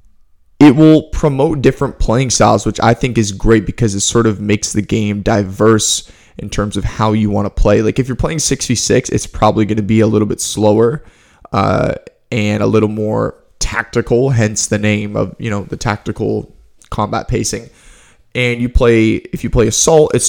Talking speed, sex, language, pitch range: 190 wpm, male, English, 105-120 Hz